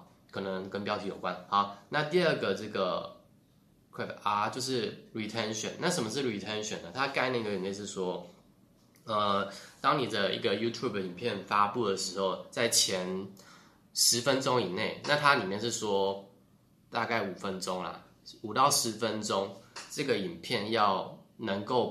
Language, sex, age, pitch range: Chinese, male, 20-39, 95-115 Hz